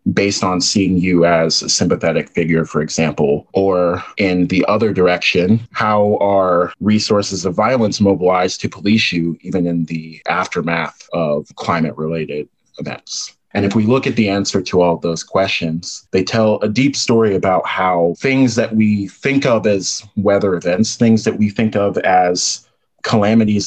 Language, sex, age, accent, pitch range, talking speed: English, male, 30-49, American, 90-110 Hz, 160 wpm